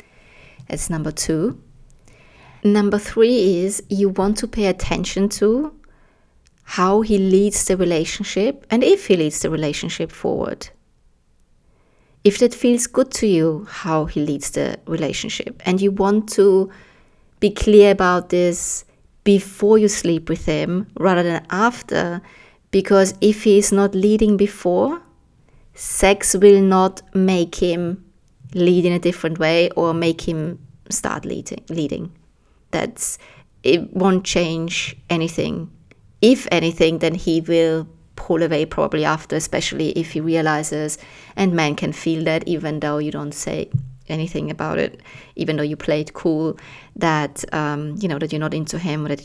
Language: English